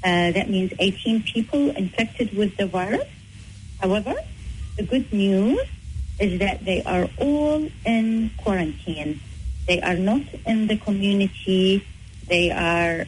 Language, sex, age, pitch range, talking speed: English, female, 30-49, 160-245 Hz, 130 wpm